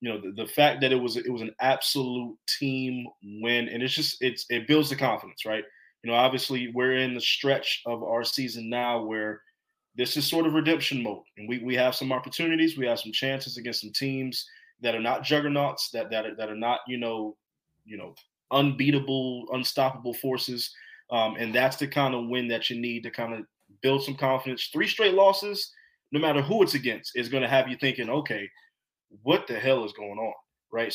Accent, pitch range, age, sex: American, 115-140 Hz, 20-39, male